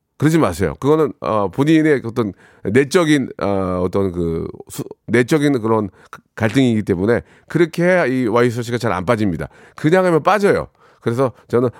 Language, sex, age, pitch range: Korean, male, 40-59, 125-175 Hz